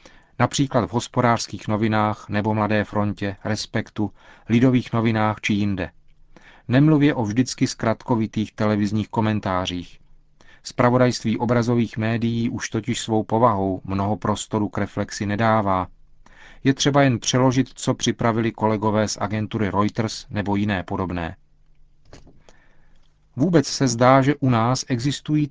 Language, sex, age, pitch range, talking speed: Czech, male, 40-59, 105-130 Hz, 120 wpm